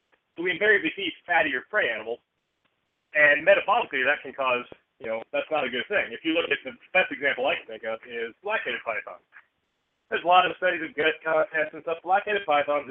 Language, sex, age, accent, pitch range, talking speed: English, male, 40-59, American, 140-205 Hz, 210 wpm